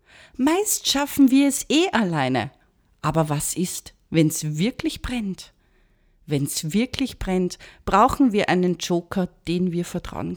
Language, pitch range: German, 170-240 Hz